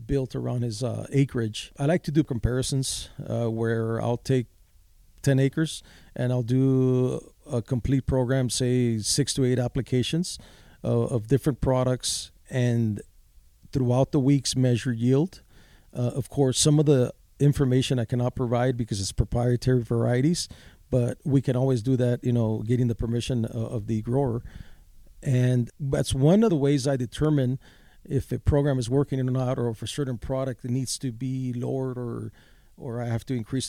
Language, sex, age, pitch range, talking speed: English, male, 40-59, 120-135 Hz, 170 wpm